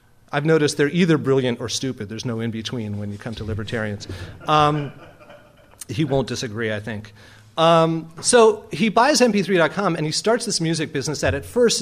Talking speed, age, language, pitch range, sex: 180 wpm, 40-59, English, 125-170 Hz, male